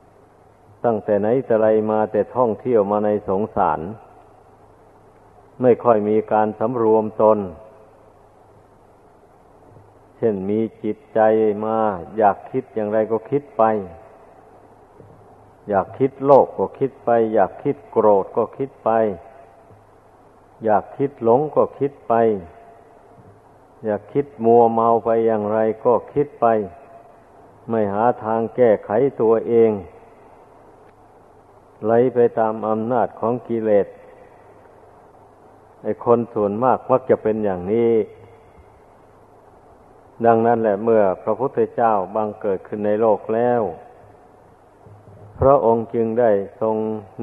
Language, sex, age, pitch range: Thai, male, 50-69, 105-120 Hz